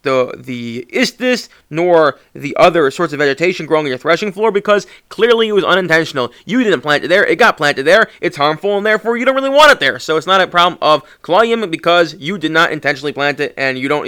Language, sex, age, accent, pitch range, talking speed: English, male, 20-39, American, 150-195 Hz, 235 wpm